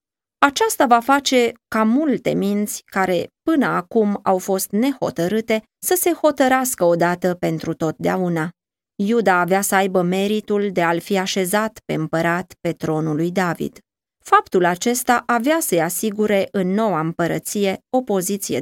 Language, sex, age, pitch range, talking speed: Romanian, female, 20-39, 180-240 Hz, 140 wpm